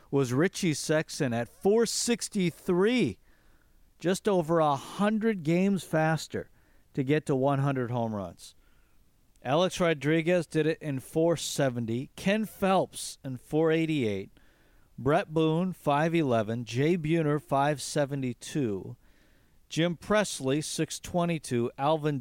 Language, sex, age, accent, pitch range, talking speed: English, male, 50-69, American, 125-170 Hz, 95 wpm